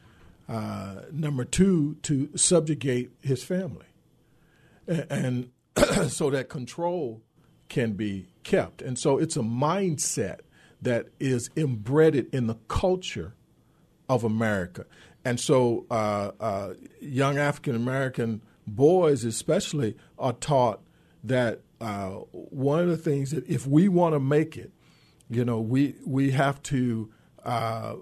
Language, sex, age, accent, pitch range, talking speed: English, male, 50-69, American, 110-140 Hz, 125 wpm